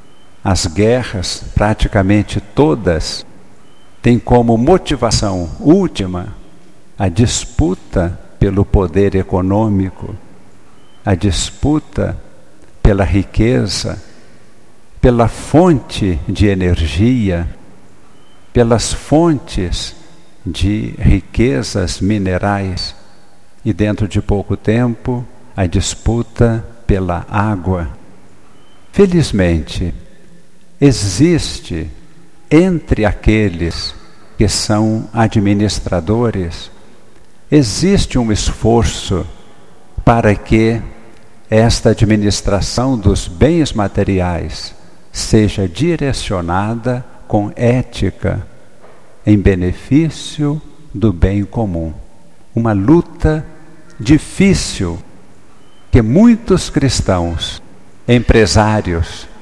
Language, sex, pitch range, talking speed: Portuguese, male, 95-120 Hz, 70 wpm